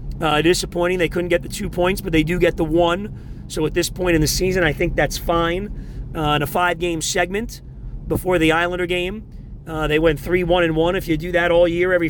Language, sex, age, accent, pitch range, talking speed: English, male, 40-59, American, 155-180 Hz, 240 wpm